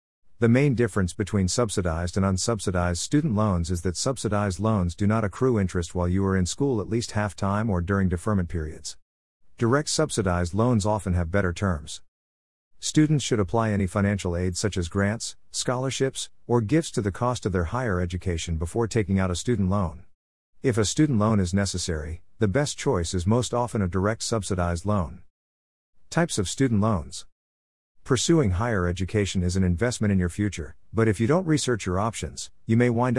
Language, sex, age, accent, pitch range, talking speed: English, male, 50-69, American, 90-115 Hz, 180 wpm